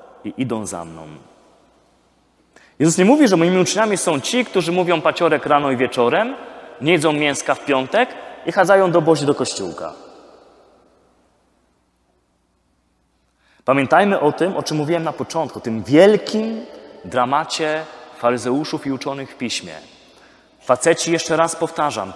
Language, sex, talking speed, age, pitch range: Polish, male, 135 wpm, 30-49, 120-185 Hz